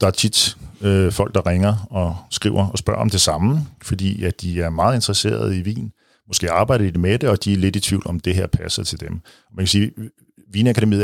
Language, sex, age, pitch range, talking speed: Danish, male, 50-69, 90-115 Hz, 240 wpm